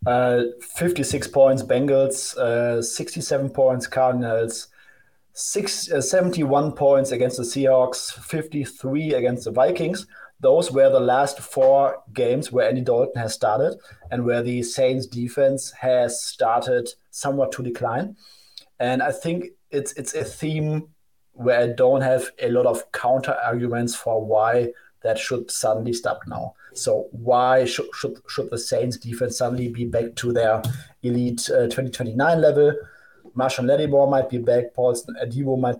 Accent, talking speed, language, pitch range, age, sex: German, 145 wpm, English, 120-140 Hz, 30-49, male